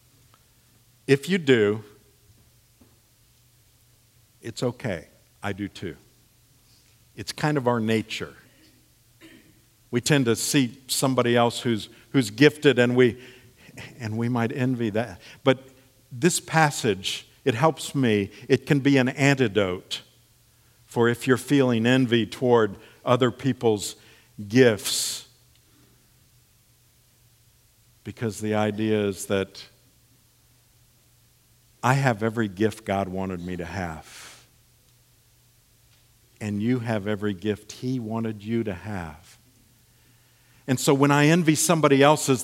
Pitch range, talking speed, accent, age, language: 115-130 Hz, 115 wpm, American, 50-69, English